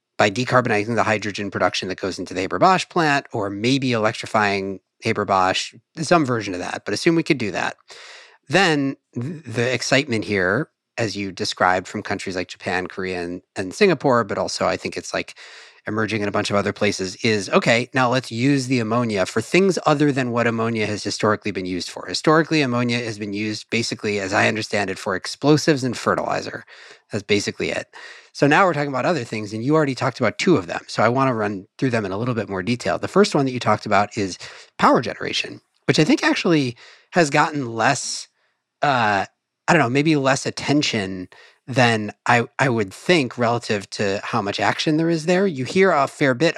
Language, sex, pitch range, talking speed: English, male, 105-145 Hz, 205 wpm